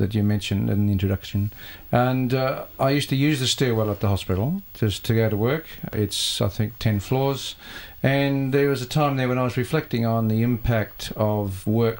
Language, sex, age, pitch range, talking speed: English, male, 50-69, 100-115 Hz, 210 wpm